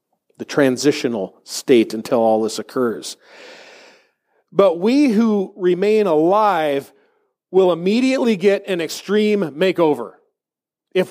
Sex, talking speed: male, 105 wpm